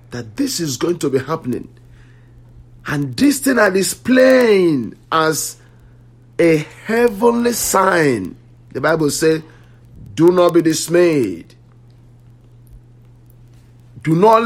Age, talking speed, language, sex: 50-69, 105 wpm, English, male